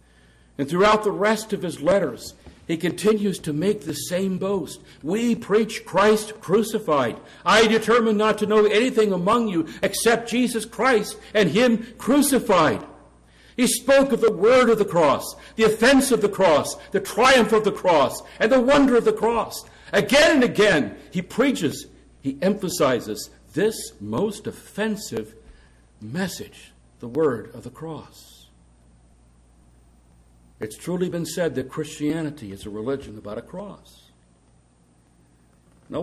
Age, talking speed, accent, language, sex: 60-79, 140 wpm, American, English, male